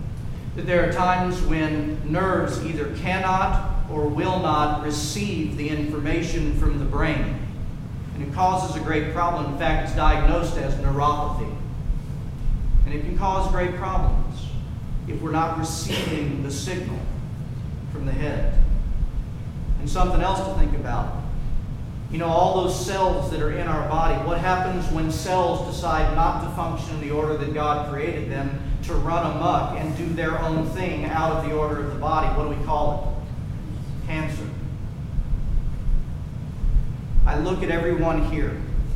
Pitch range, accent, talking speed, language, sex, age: 150-170 Hz, American, 155 wpm, English, male, 40-59